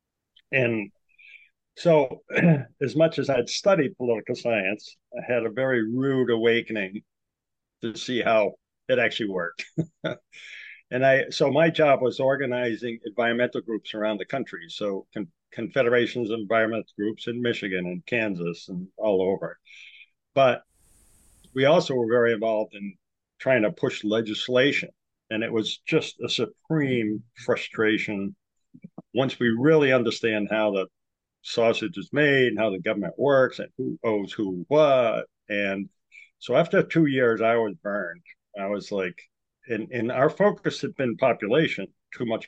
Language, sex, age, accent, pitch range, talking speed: English, male, 50-69, American, 105-130 Hz, 145 wpm